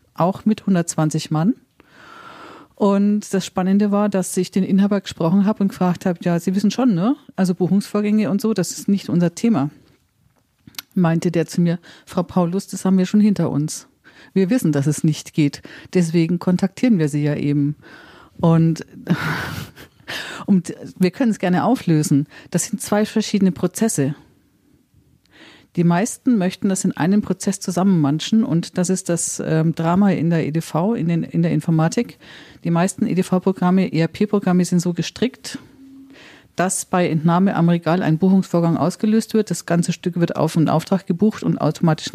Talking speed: 165 wpm